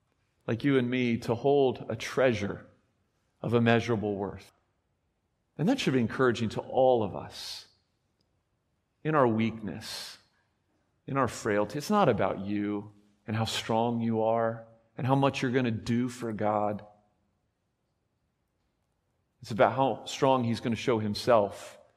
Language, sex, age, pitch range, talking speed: English, male, 40-59, 110-135 Hz, 145 wpm